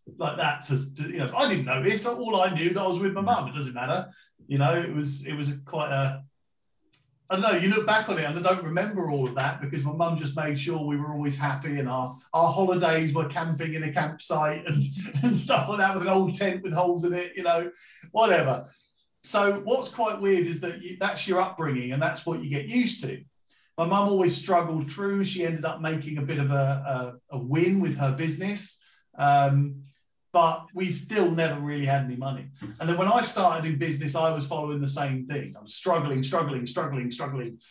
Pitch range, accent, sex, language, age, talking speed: 145-195 Hz, British, male, English, 40-59, 230 wpm